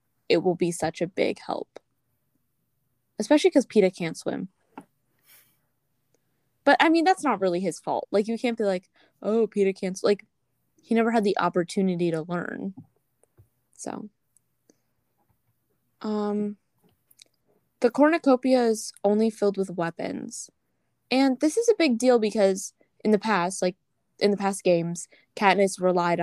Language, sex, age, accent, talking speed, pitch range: English, female, 10-29, American, 145 wpm, 170-210 Hz